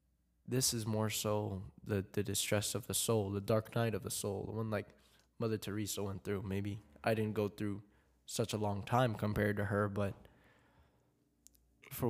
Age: 10-29